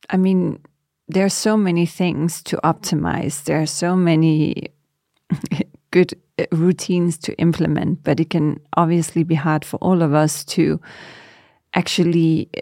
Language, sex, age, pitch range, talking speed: Danish, female, 40-59, 155-180 Hz, 140 wpm